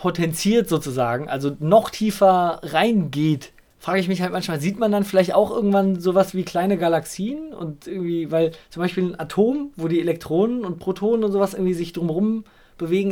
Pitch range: 150-195 Hz